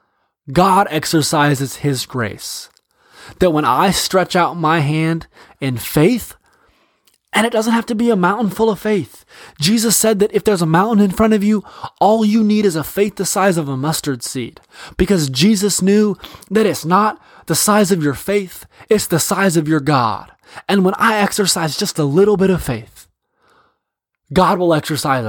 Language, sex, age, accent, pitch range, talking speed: English, male, 20-39, American, 140-190 Hz, 185 wpm